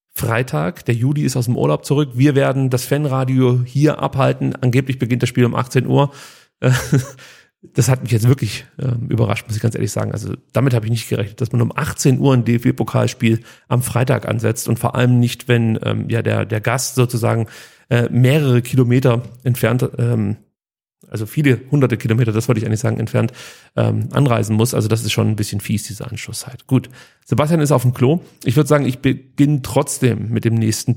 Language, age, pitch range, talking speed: German, 40-59, 115-135 Hz, 200 wpm